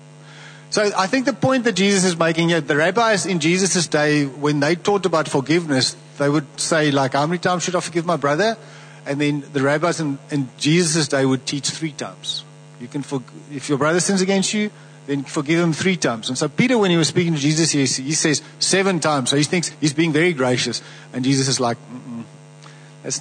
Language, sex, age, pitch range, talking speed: English, male, 50-69, 140-170 Hz, 210 wpm